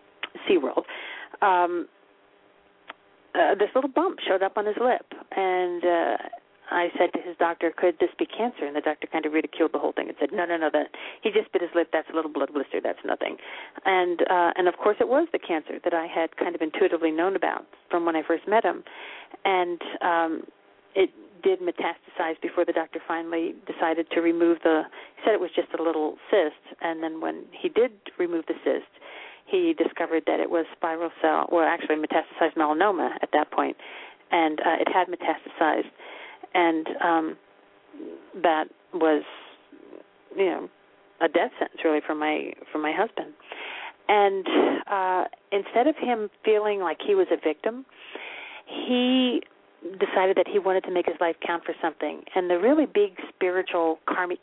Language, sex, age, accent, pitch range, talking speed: English, female, 40-59, American, 165-250 Hz, 180 wpm